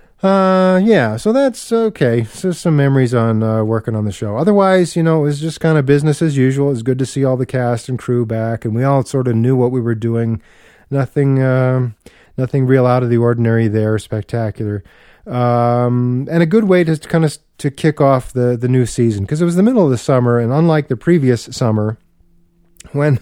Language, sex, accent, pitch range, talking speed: English, male, American, 105-140 Hz, 220 wpm